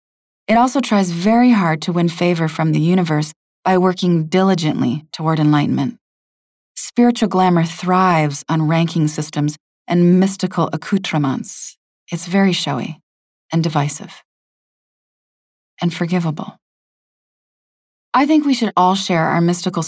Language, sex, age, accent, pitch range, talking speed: English, female, 30-49, American, 160-205 Hz, 120 wpm